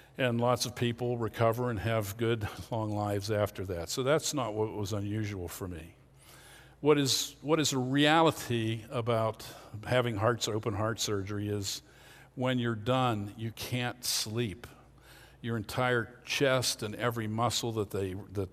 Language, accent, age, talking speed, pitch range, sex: English, American, 50-69, 155 wpm, 110-130 Hz, male